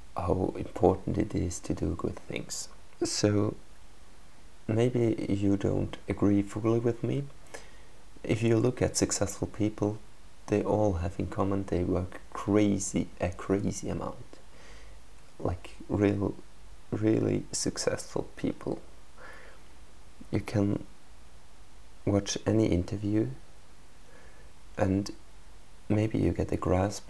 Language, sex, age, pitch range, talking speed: English, male, 30-49, 90-110 Hz, 110 wpm